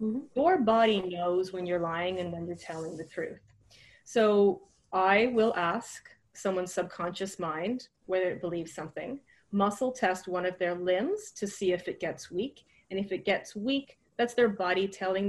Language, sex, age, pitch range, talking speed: English, female, 30-49, 180-220 Hz, 175 wpm